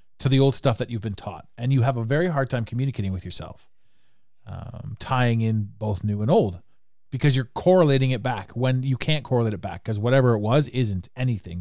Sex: male